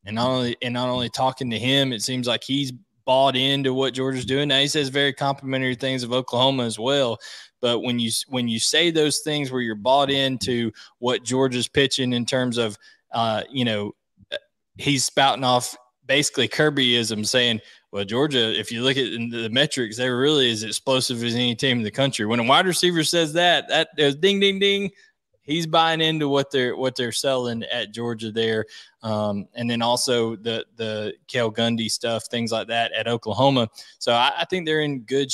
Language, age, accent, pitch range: English, 20-39, American, 115-135 Hz